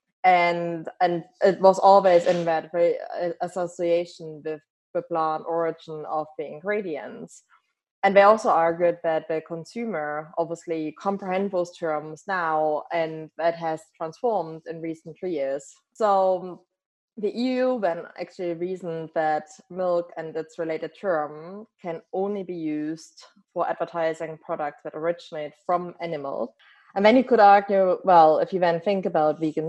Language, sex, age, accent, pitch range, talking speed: English, female, 20-39, German, 155-185 Hz, 140 wpm